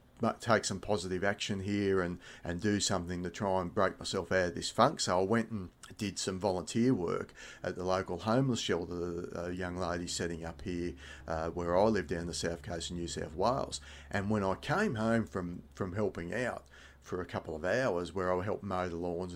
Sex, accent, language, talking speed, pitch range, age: male, Australian, English, 215 wpm, 90-110 Hz, 30-49